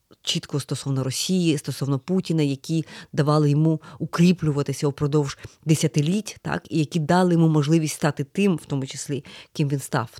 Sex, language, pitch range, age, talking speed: female, Ukrainian, 140-170 Hz, 30-49, 145 wpm